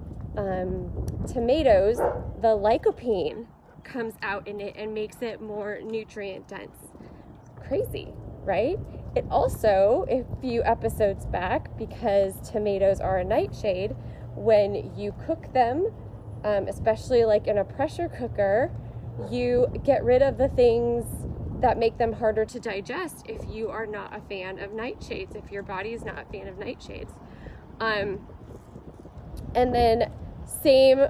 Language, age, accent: English, 20-39, American